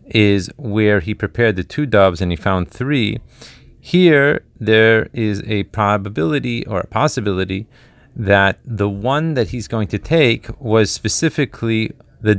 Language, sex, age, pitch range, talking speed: Hebrew, male, 30-49, 100-130 Hz, 145 wpm